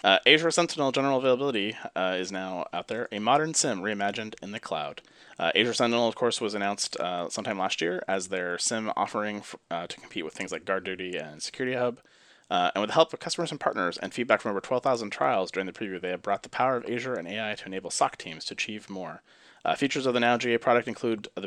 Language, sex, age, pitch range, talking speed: English, male, 30-49, 105-130 Hz, 240 wpm